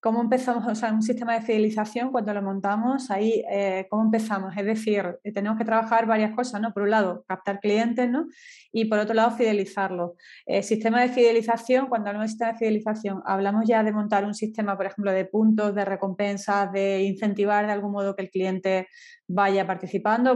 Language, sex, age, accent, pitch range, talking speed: Spanish, female, 20-39, Spanish, 200-230 Hz, 195 wpm